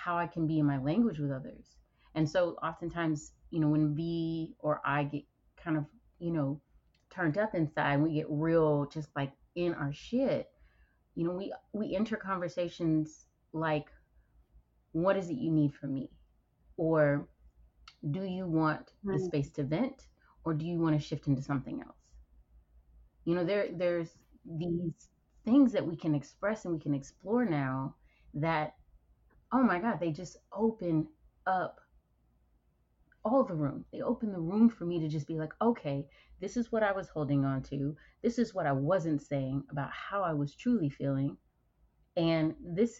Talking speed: 175 wpm